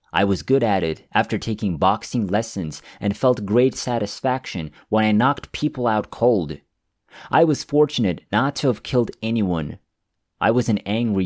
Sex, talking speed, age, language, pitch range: male, 165 wpm, 30-49, English, 95-120 Hz